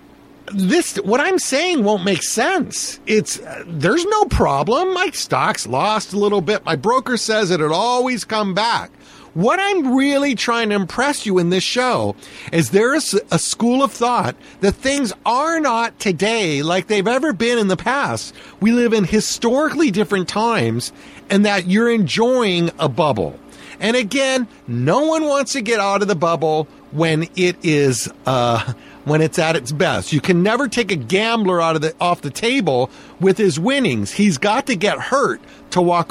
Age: 50-69